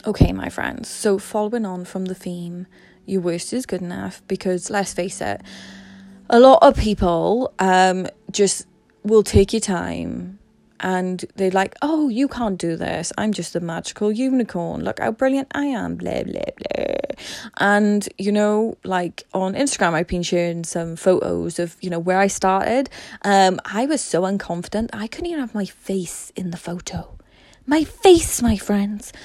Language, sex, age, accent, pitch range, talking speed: English, female, 20-39, British, 180-235 Hz, 170 wpm